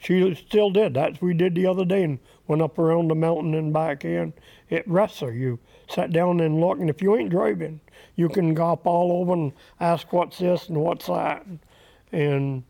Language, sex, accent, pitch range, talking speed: English, male, American, 130-170 Hz, 215 wpm